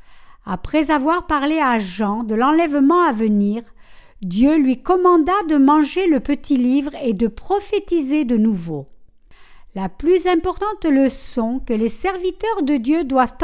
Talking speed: 145 wpm